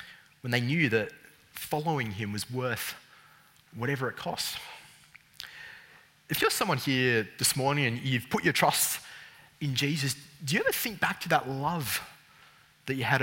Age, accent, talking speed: 20-39, Australian, 160 wpm